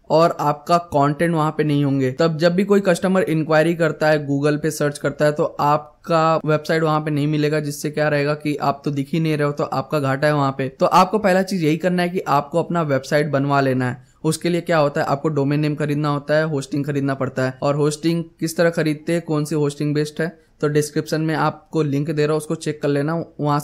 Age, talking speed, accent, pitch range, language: 20-39, 245 wpm, native, 140-160 Hz, Hindi